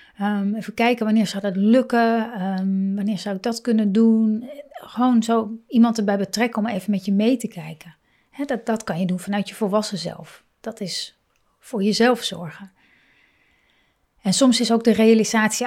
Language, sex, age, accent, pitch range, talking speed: Dutch, female, 30-49, Dutch, 195-230 Hz, 180 wpm